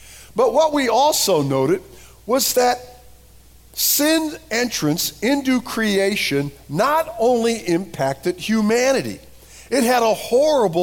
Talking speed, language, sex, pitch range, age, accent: 105 wpm, English, male, 165-240 Hz, 50-69, American